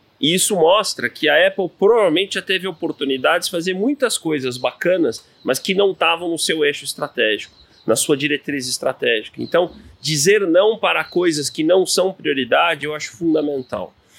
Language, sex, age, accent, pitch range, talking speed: Portuguese, male, 30-49, Brazilian, 140-190 Hz, 165 wpm